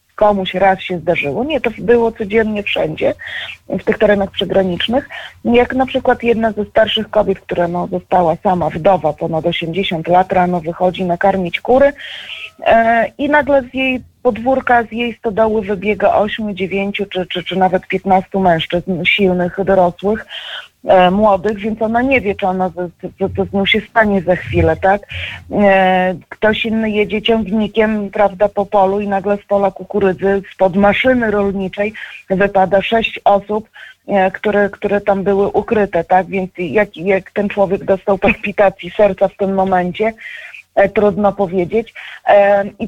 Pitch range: 190-230 Hz